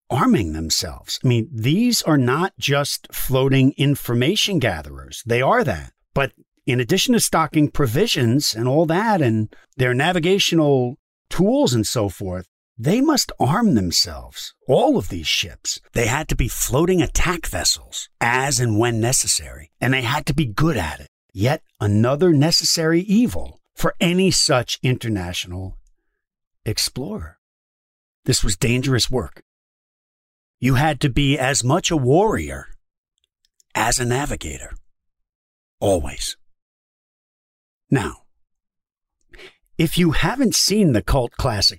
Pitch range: 100-150 Hz